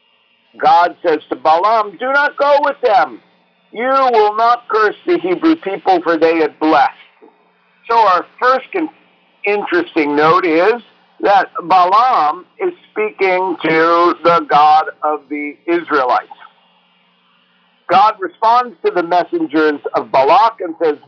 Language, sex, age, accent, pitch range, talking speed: English, male, 50-69, American, 155-250 Hz, 130 wpm